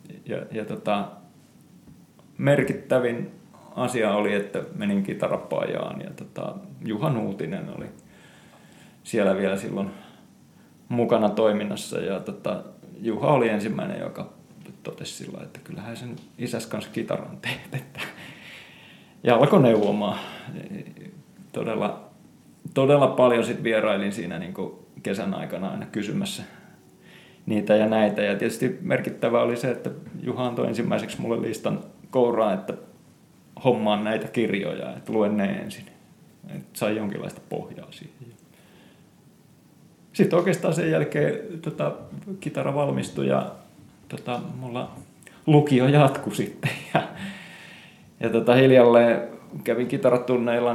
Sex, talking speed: male, 115 wpm